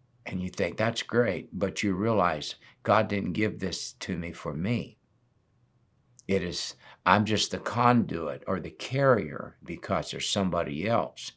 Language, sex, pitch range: English, male, 100-125 Hz